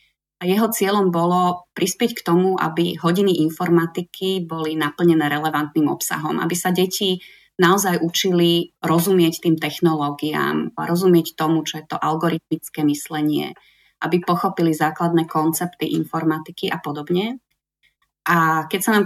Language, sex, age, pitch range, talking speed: Slovak, female, 30-49, 165-185 Hz, 125 wpm